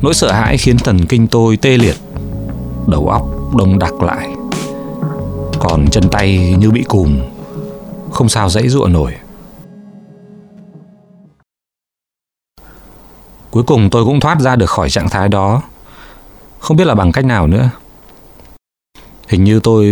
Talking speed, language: 140 wpm, Vietnamese